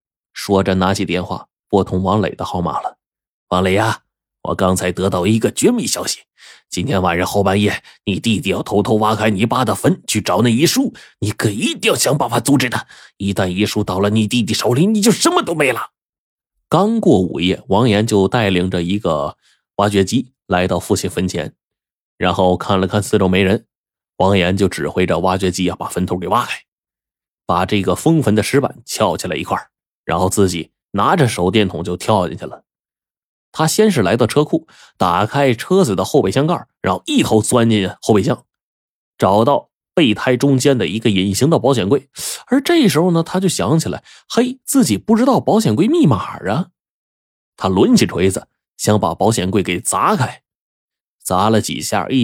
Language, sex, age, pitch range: Chinese, male, 30-49, 95-140 Hz